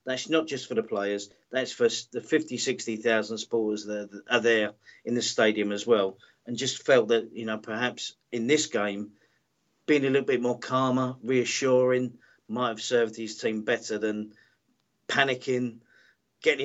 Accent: British